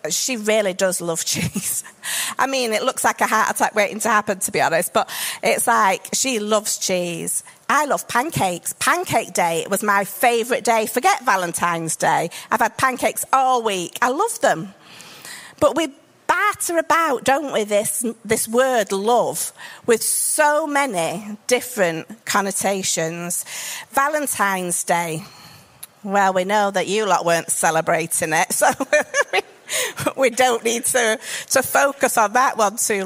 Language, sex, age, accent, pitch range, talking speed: English, female, 40-59, British, 195-265 Hz, 150 wpm